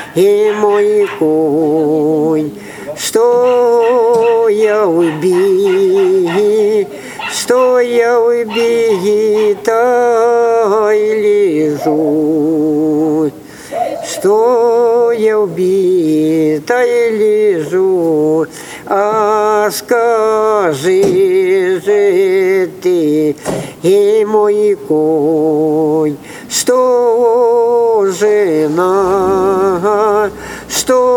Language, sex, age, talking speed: Ukrainian, male, 50-69, 60 wpm